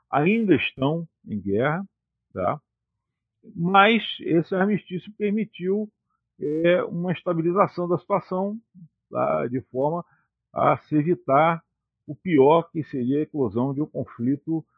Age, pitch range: 50-69, 120-170 Hz